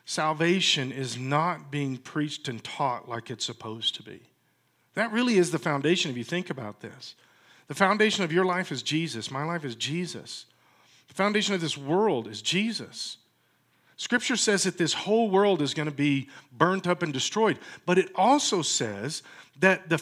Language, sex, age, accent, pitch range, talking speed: English, male, 50-69, American, 145-200 Hz, 180 wpm